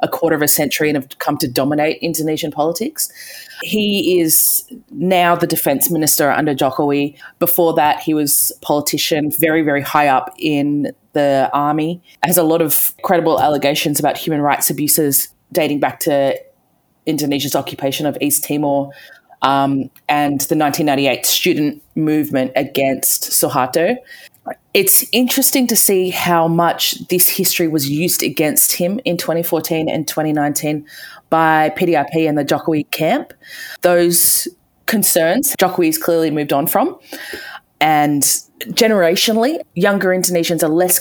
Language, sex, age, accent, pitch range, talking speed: English, female, 20-39, Australian, 145-180 Hz, 140 wpm